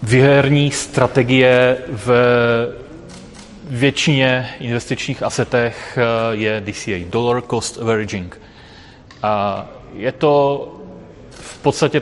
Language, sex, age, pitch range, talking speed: Czech, male, 30-49, 105-125 Hz, 75 wpm